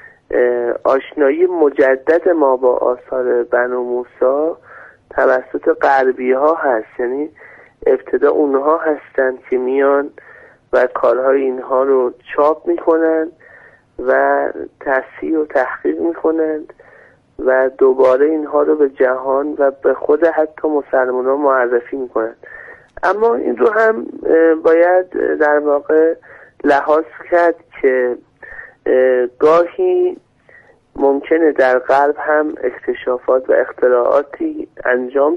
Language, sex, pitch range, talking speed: Persian, male, 130-165 Hz, 105 wpm